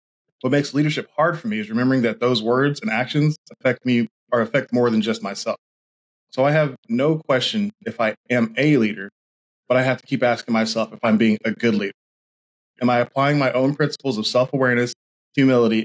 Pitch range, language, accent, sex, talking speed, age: 110-140 Hz, English, American, male, 200 wpm, 20-39